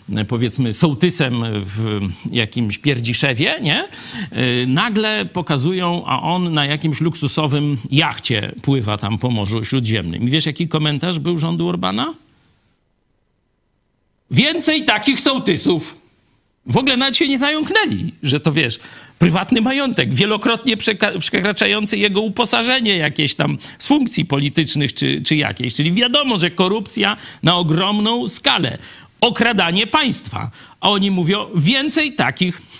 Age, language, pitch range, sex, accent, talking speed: 50-69, Polish, 130-205 Hz, male, native, 125 wpm